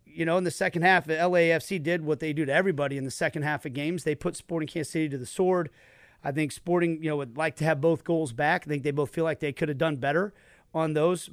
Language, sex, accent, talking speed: English, male, American, 280 wpm